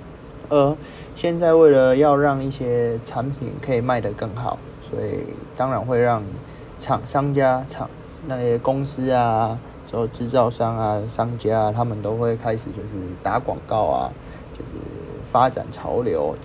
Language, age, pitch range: Chinese, 20-39, 115-140 Hz